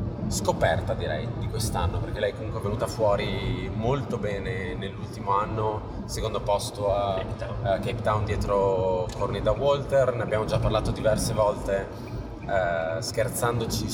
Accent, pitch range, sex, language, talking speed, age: native, 100-115 Hz, male, Italian, 130 wpm, 20-39